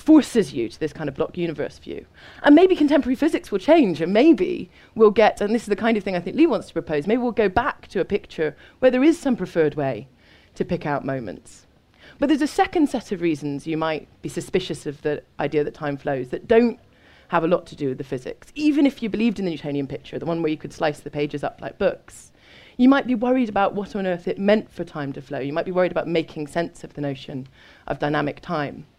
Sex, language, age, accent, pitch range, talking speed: female, English, 30-49, British, 150-250 Hz, 255 wpm